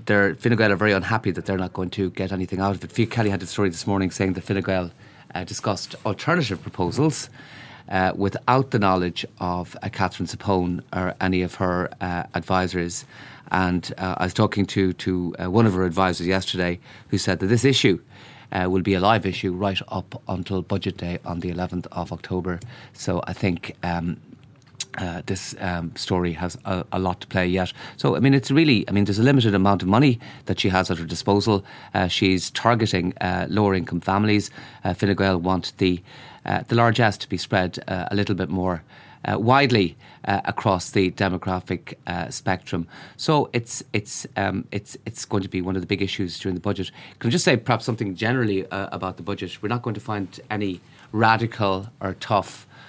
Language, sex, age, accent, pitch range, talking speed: English, male, 30-49, Irish, 90-110 Hz, 205 wpm